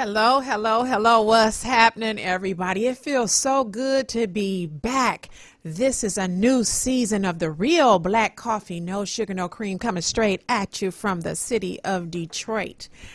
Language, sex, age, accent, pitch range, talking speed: English, female, 40-59, American, 165-230 Hz, 165 wpm